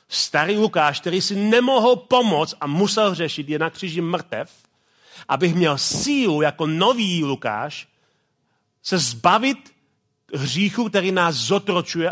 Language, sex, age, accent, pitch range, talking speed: Czech, male, 40-59, native, 170-215 Hz, 125 wpm